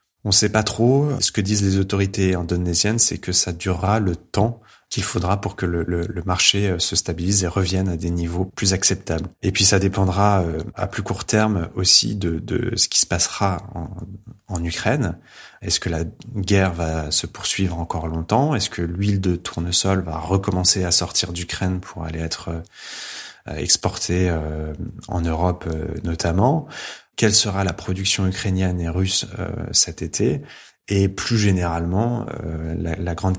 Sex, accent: male, French